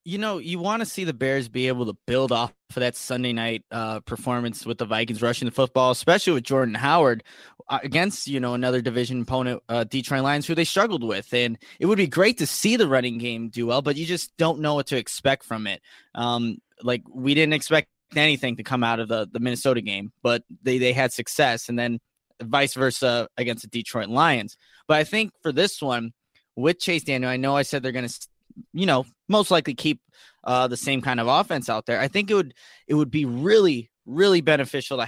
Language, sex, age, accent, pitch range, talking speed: English, male, 20-39, American, 120-150 Hz, 225 wpm